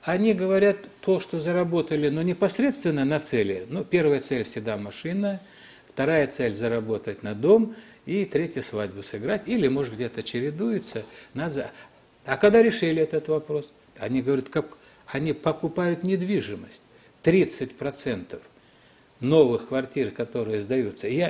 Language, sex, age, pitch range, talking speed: Russian, male, 60-79, 135-195 Hz, 125 wpm